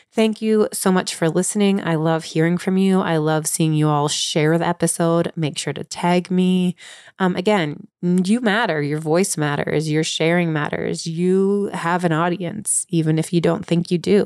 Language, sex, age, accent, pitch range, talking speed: English, female, 30-49, American, 160-195 Hz, 190 wpm